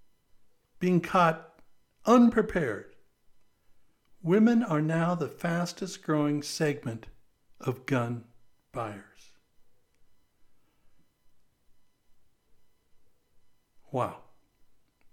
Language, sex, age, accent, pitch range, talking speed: English, male, 60-79, American, 135-170 Hz, 55 wpm